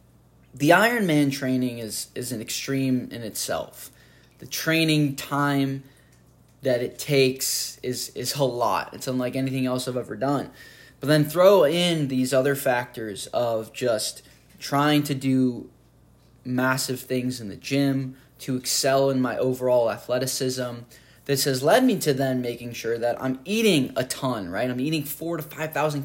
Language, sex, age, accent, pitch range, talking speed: English, male, 10-29, American, 125-150 Hz, 155 wpm